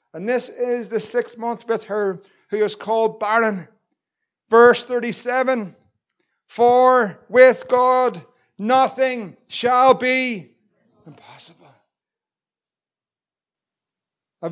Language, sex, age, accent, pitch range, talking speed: English, male, 60-79, Irish, 175-220 Hz, 90 wpm